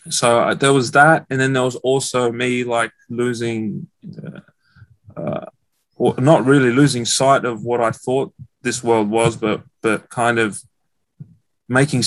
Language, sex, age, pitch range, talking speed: English, male, 20-39, 115-130 Hz, 155 wpm